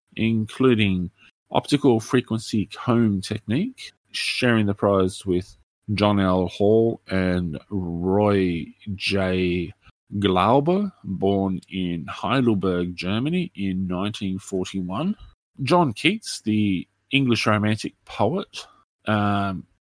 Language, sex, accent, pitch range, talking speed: English, male, Australian, 95-110 Hz, 90 wpm